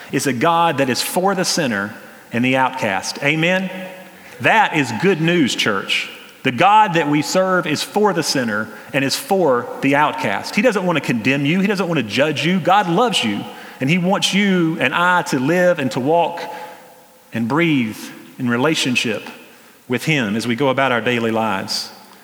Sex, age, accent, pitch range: male, 40-59, American, 140-195 Hz